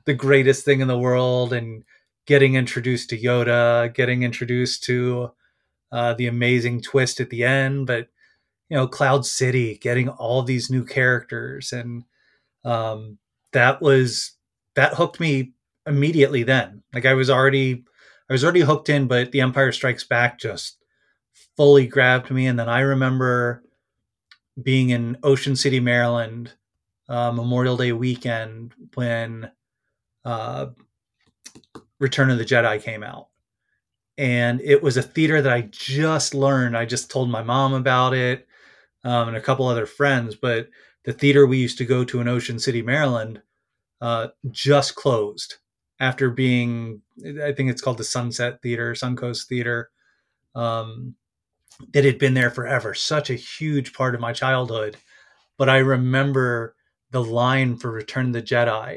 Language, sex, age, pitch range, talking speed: English, male, 30-49, 120-135 Hz, 155 wpm